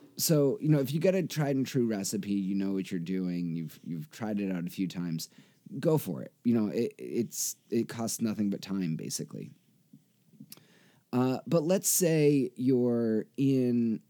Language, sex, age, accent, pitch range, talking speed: English, male, 30-49, American, 95-130 Hz, 185 wpm